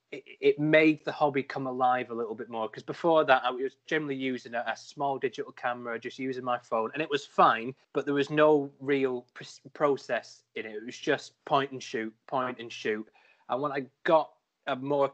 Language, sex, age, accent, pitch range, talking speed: English, male, 20-39, British, 120-145 Hz, 205 wpm